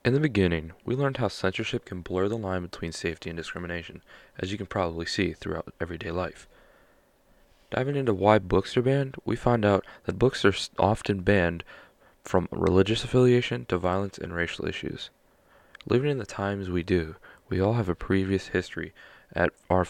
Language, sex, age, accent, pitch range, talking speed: English, male, 20-39, American, 90-105 Hz, 180 wpm